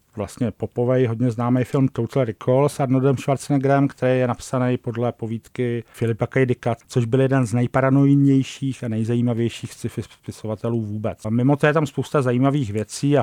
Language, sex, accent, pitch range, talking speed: English, male, Czech, 115-135 Hz, 165 wpm